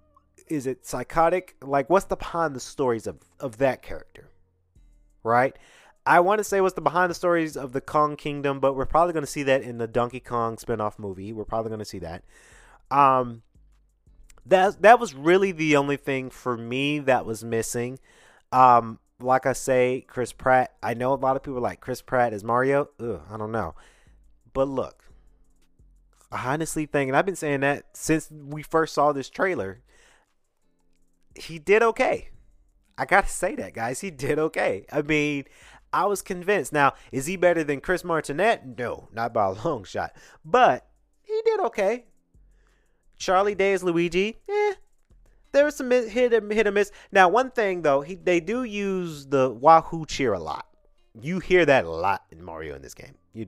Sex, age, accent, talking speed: male, 30-49, American, 185 wpm